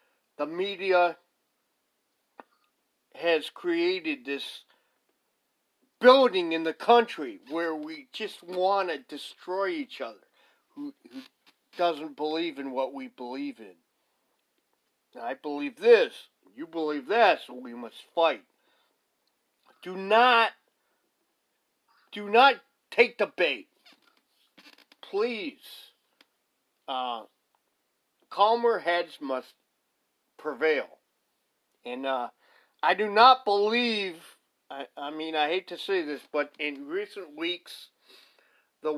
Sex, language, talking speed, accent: male, English, 105 wpm, American